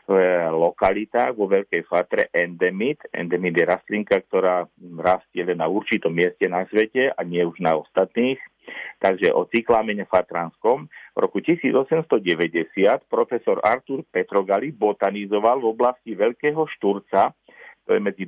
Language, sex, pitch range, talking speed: Slovak, male, 95-130 Hz, 130 wpm